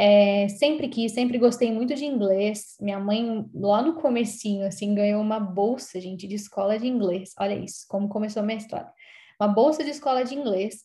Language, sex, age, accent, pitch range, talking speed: Portuguese, female, 10-29, Brazilian, 205-265 Hz, 195 wpm